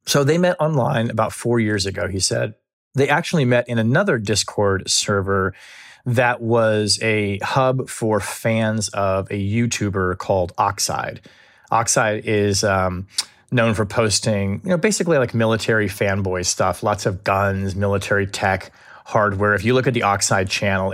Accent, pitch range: American, 100-115 Hz